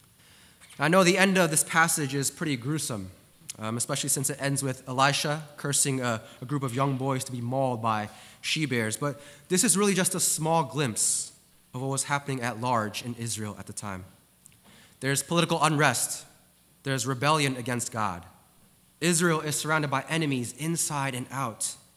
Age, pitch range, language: 20-39, 115-150 Hz, English